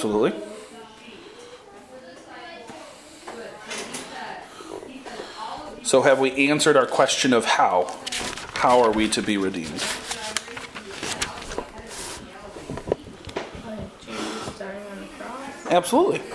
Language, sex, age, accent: English, male, 40-59, American